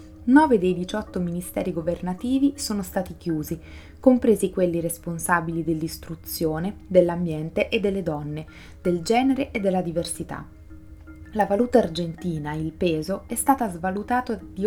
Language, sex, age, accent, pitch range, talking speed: Italian, female, 20-39, native, 165-205 Hz, 125 wpm